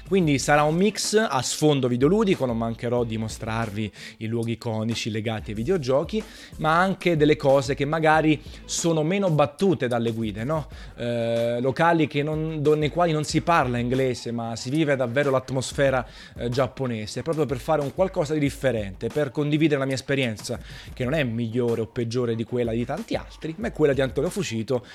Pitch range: 120-150 Hz